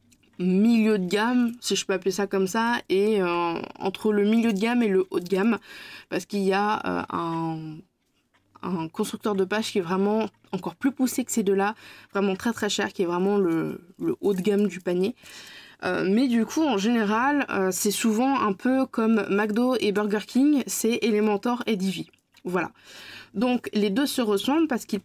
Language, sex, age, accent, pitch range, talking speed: French, female, 20-39, French, 190-235 Hz, 200 wpm